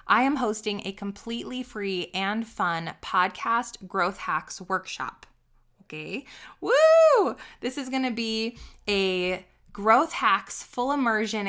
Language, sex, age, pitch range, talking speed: English, female, 20-39, 185-235 Hz, 125 wpm